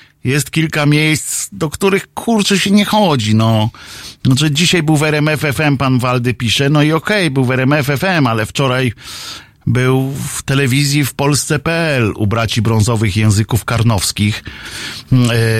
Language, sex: Polish, male